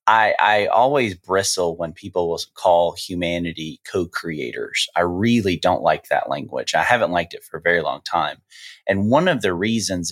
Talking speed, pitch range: 180 wpm, 90-125 Hz